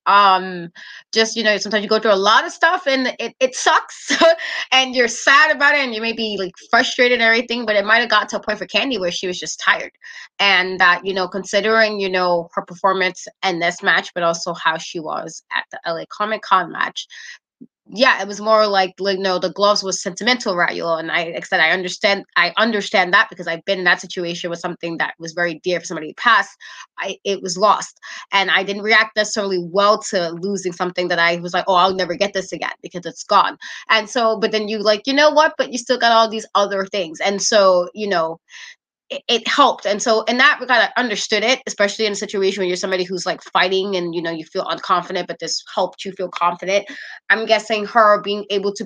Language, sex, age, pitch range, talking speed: English, female, 20-39, 185-225 Hz, 230 wpm